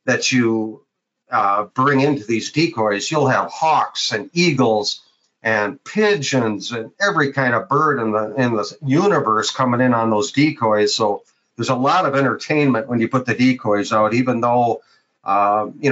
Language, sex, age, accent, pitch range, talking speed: English, male, 50-69, American, 115-140 Hz, 170 wpm